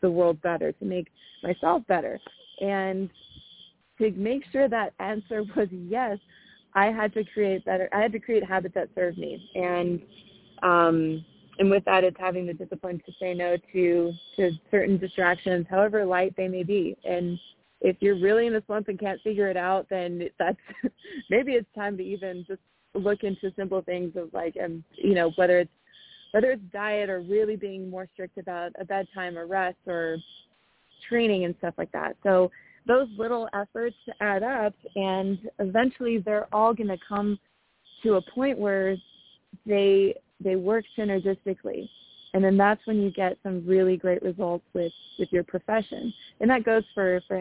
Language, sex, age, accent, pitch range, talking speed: English, female, 20-39, American, 180-210 Hz, 175 wpm